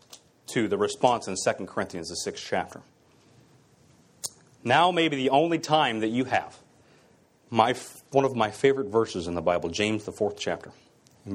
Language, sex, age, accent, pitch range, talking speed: English, male, 30-49, American, 100-130 Hz, 165 wpm